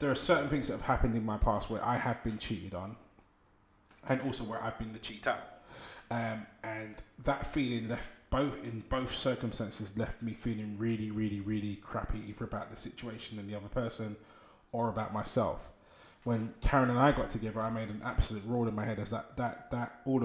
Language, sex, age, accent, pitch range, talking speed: English, male, 20-39, British, 105-120 Hz, 205 wpm